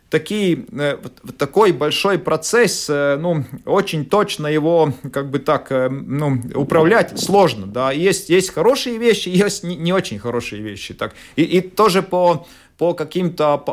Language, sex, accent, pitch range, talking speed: Russian, male, native, 140-180 Hz, 130 wpm